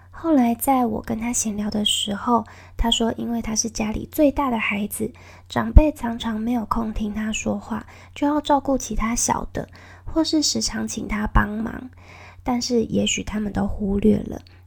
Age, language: 20-39, Chinese